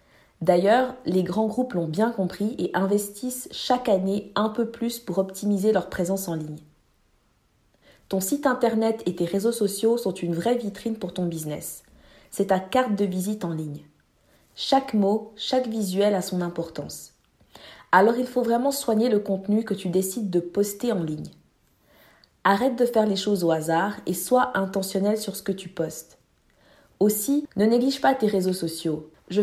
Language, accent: French, French